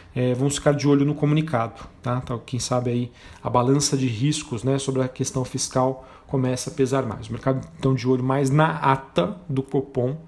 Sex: male